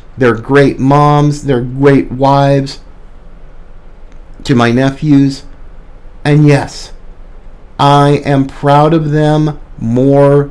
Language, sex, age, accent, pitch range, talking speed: English, male, 50-69, American, 115-185 Hz, 95 wpm